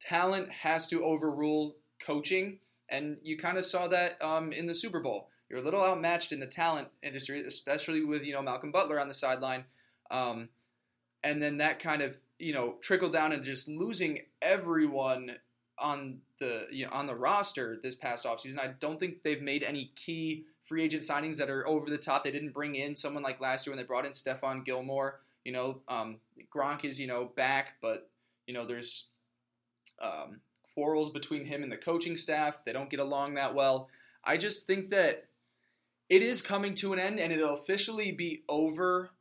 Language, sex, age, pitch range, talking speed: English, male, 20-39, 130-160 Hz, 195 wpm